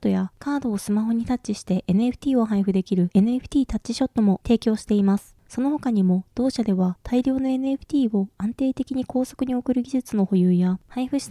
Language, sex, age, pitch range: Japanese, female, 20-39, 205-255 Hz